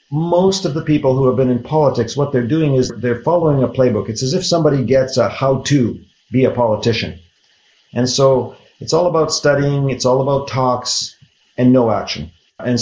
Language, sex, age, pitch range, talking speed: English, male, 50-69, 120-140 Hz, 190 wpm